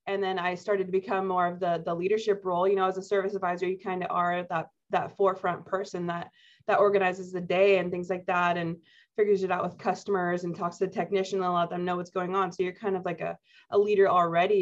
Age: 20-39